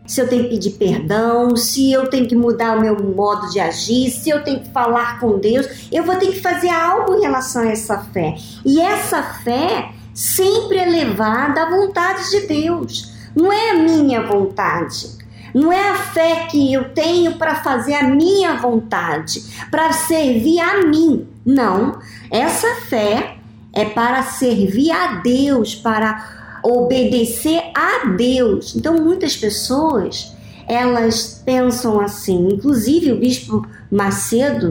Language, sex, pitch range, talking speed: Portuguese, male, 220-325 Hz, 150 wpm